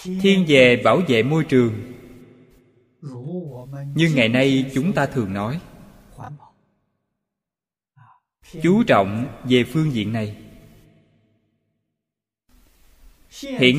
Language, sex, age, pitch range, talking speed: Vietnamese, male, 20-39, 115-150 Hz, 85 wpm